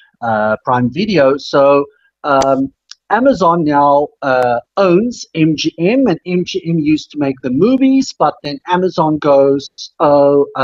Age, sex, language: 50-69, male, English